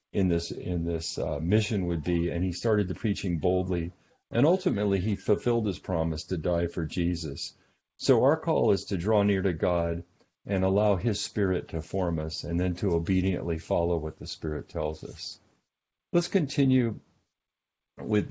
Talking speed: 175 wpm